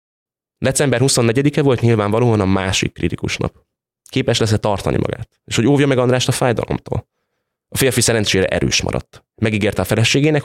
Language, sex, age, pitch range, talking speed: Hungarian, male, 20-39, 95-125 Hz, 155 wpm